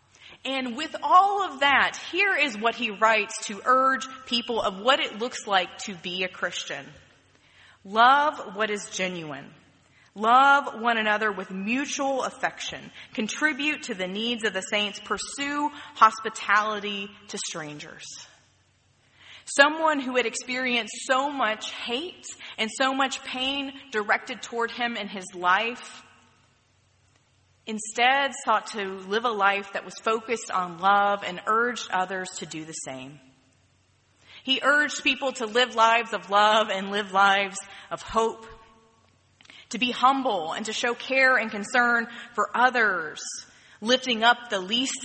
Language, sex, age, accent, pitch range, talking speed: English, female, 30-49, American, 185-250 Hz, 140 wpm